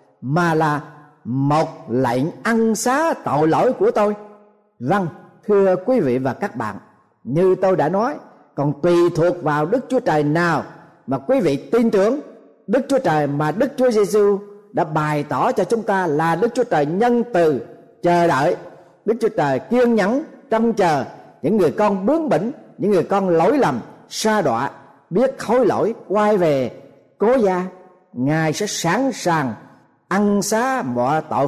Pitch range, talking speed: 155-225 Hz, 170 wpm